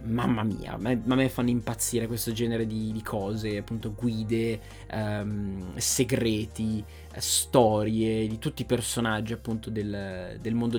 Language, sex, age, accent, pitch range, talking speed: Italian, male, 20-39, native, 110-130 Hz, 140 wpm